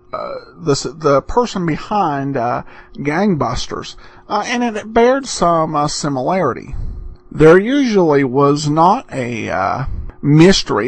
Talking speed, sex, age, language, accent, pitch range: 120 wpm, male, 50-69, English, American, 135-195 Hz